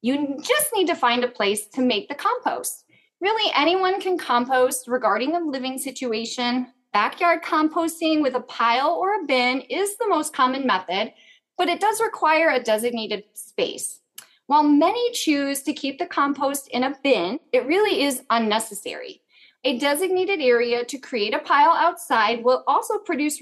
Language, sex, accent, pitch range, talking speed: English, female, American, 245-340 Hz, 165 wpm